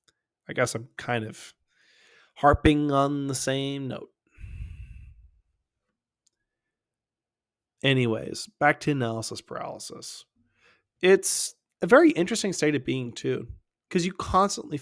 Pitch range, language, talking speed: 115-170 Hz, English, 105 wpm